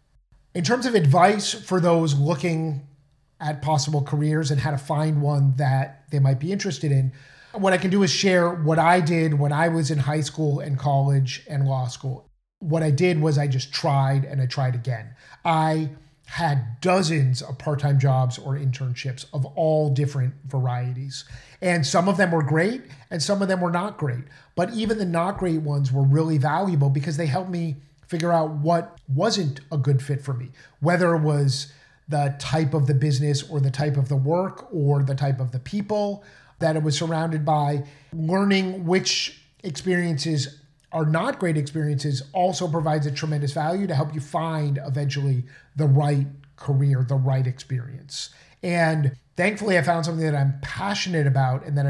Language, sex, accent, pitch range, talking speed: English, male, American, 140-165 Hz, 185 wpm